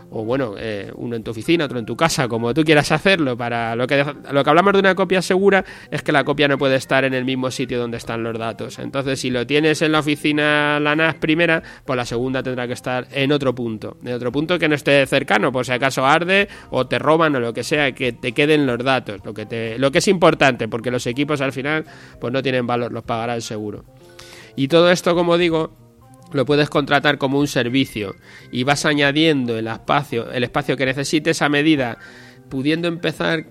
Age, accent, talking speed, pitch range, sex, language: 30-49, Spanish, 225 wpm, 125-155 Hz, male, Spanish